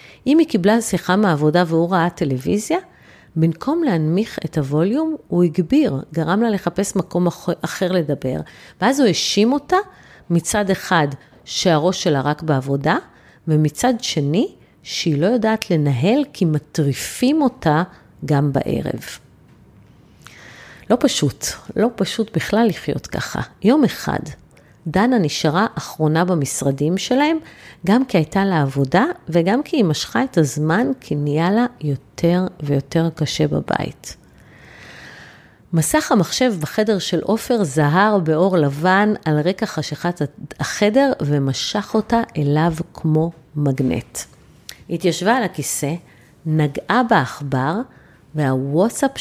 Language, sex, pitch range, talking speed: Hebrew, female, 150-220 Hz, 115 wpm